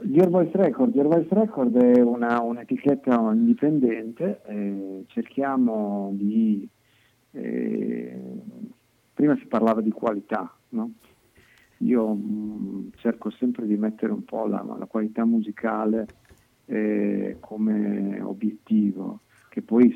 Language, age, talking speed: Italian, 50-69, 105 wpm